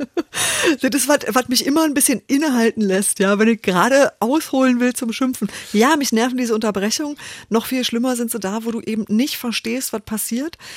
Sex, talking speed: female, 200 wpm